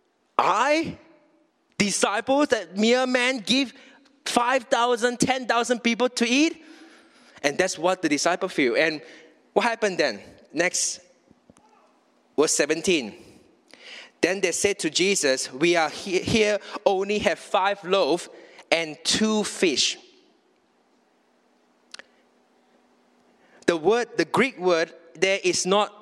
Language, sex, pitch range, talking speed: English, male, 180-275 Hz, 110 wpm